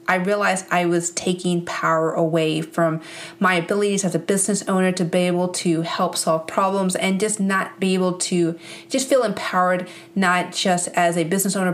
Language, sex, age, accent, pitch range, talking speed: English, female, 30-49, American, 170-200 Hz, 185 wpm